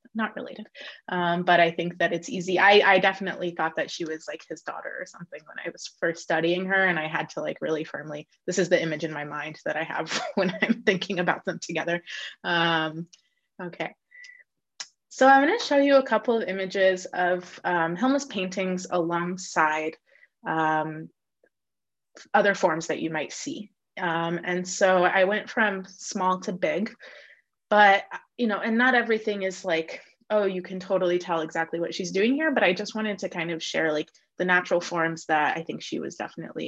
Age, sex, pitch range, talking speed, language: 20-39, female, 170-210 Hz, 195 wpm, English